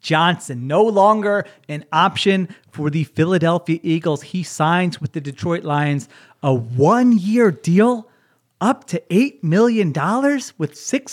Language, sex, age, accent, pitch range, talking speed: English, male, 30-49, American, 140-185 Hz, 135 wpm